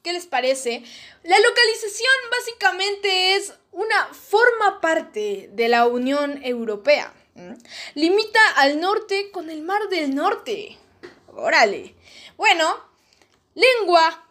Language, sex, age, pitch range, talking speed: Spanish, female, 10-29, 275-390 Hz, 105 wpm